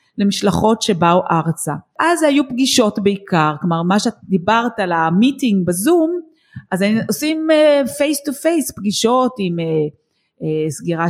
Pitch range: 180-260 Hz